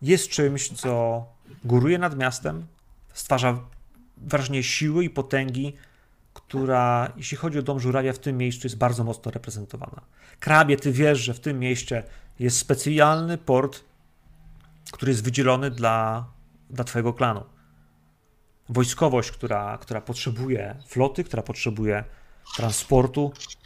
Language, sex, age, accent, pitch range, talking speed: Polish, male, 30-49, native, 115-140 Hz, 125 wpm